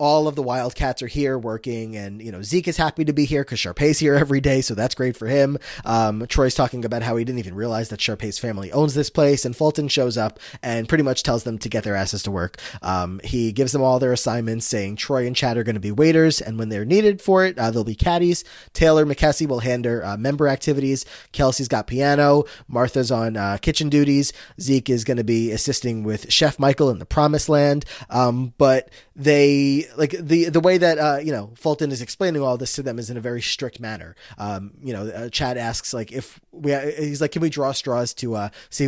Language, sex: English, male